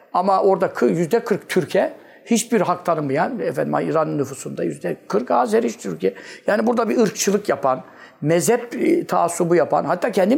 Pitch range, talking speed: 160-230 Hz, 135 wpm